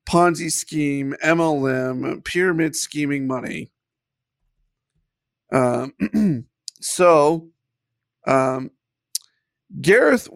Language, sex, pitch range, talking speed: English, male, 150-195 Hz, 60 wpm